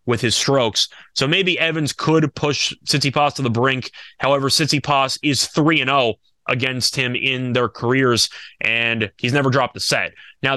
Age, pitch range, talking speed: 20-39, 120-150 Hz, 170 wpm